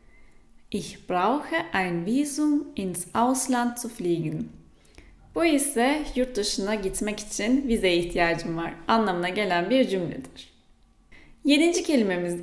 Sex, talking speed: female, 110 wpm